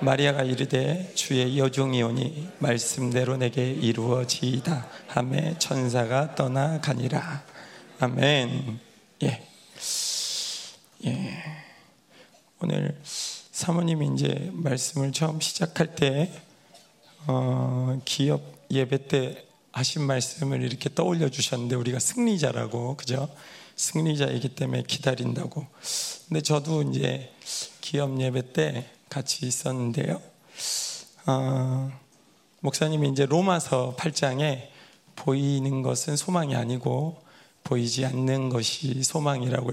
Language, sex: Korean, male